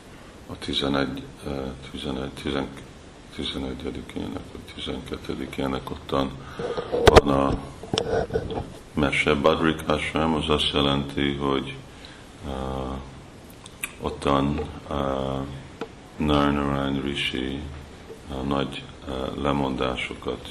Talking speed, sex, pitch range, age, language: 65 wpm, male, 65-75 Hz, 50-69, Hungarian